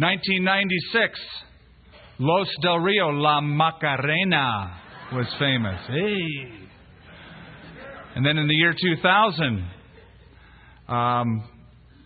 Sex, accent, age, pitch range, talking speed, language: male, American, 50-69, 145-195 Hz, 80 wpm, English